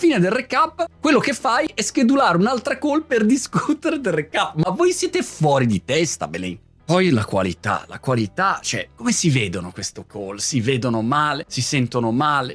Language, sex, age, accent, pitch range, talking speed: Italian, male, 30-49, native, 120-175 Hz, 180 wpm